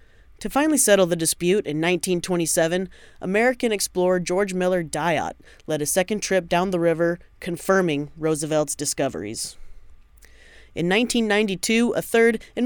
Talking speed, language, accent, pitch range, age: 130 wpm, English, American, 155-190 Hz, 30-49